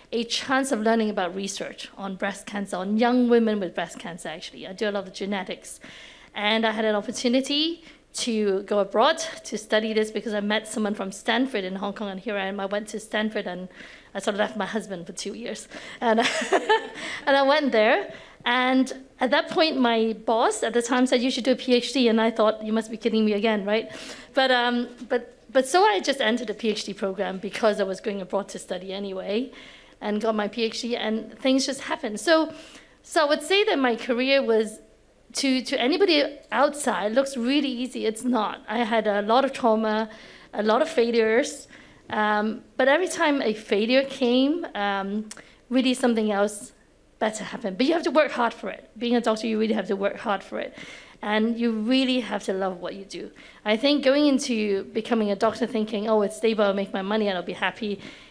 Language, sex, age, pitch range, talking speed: English, female, 50-69, 210-260 Hz, 215 wpm